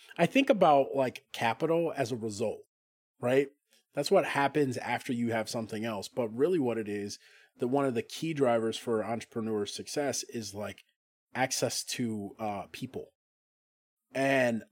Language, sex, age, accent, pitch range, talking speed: English, male, 30-49, American, 115-140 Hz, 155 wpm